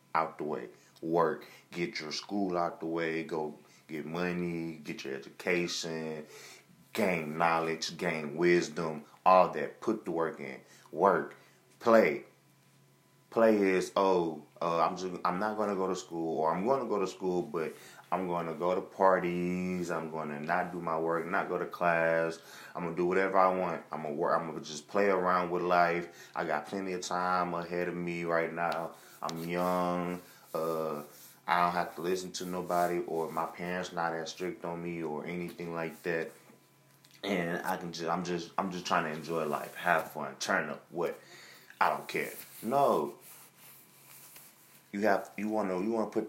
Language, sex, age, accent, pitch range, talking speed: English, male, 30-49, American, 80-90 Hz, 180 wpm